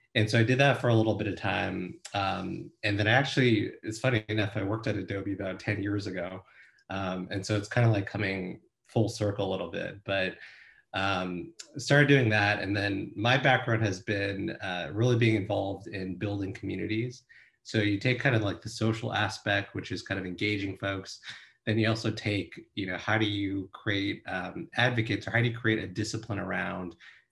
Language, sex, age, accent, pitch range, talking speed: English, male, 30-49, American, 95-110 Hz, 200 wpm